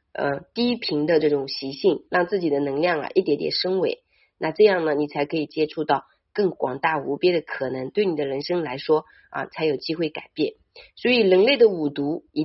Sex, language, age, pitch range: female, Chinese, 30-49, 145-185 Hz